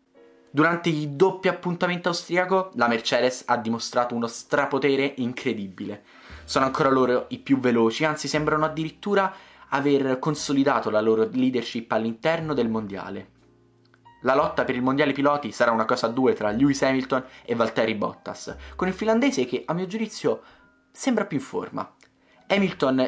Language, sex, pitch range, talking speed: Italian, male, 115-150 Hz, 150 wpm